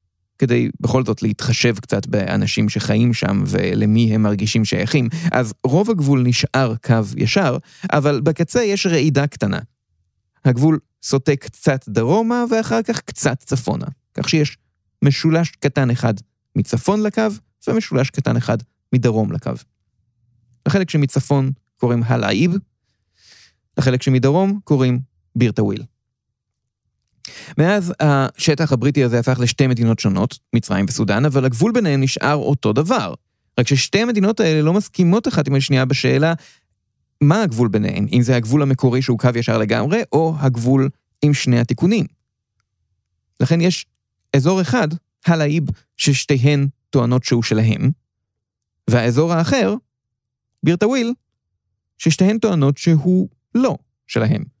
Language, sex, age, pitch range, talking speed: Hebrew, male, 30-49, 115-155 Hz, 120 wpm